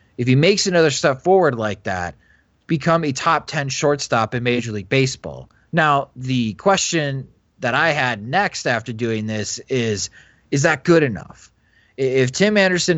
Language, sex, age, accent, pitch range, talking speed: English, male, 30-49, American, 120-155 Hz, 160 wpm